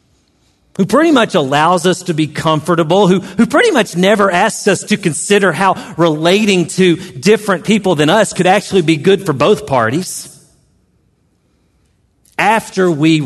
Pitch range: 135-225 Hz